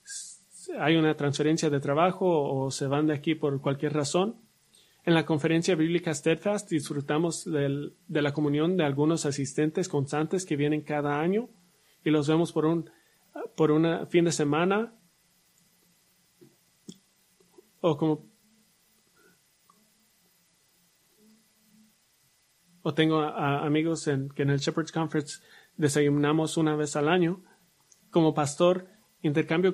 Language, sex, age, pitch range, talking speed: English, male, 30-49, 150-185 Hz, 125 wpm